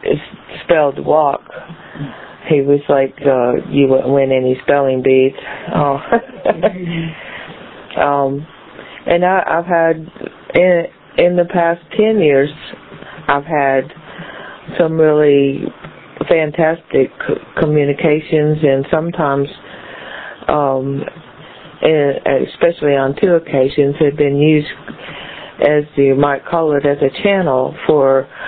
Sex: female